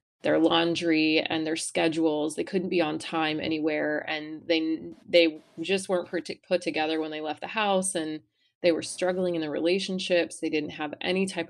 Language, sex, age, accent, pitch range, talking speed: English, female, 20-39, American, 155-180 Hz, 185 wpm